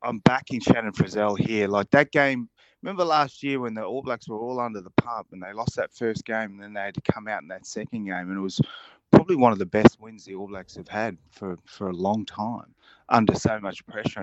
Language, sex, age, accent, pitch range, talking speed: English, male, 30-49, Australian, 105-135 Hz, 255 wpm